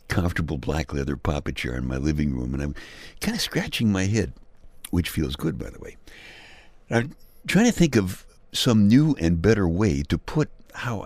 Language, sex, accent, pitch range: English, male, American, 80-120 Hz